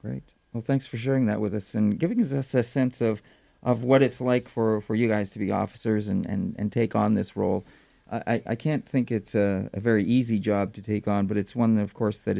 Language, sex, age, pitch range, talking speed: English, male, 50-69, 105-130 Hz, 245 wpm